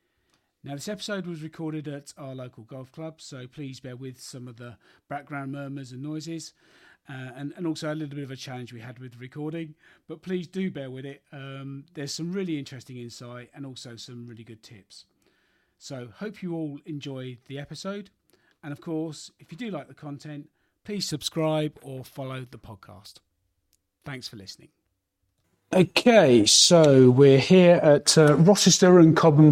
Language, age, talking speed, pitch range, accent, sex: English, 40-59, 180 wpm, 130-165 Hz, British, male